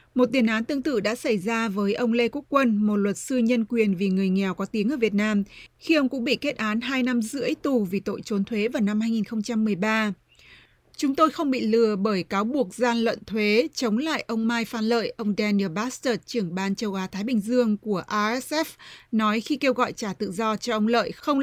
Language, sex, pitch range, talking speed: Vietnamese, female, 210-250 Hz, 230 wpm